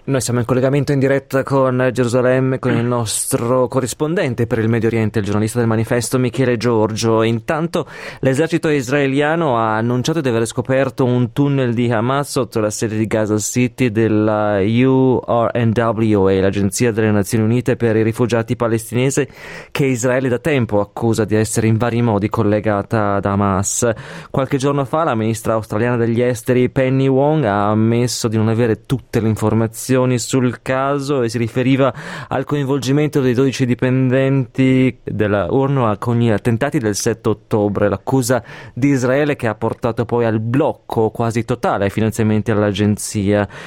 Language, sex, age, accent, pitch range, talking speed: Italian, male, 20-39, native, 110-130 Hz, 155 wpm